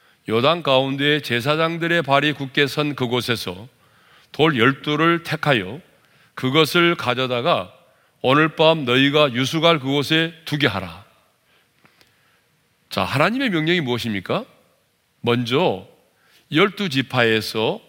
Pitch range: 120-170 Hz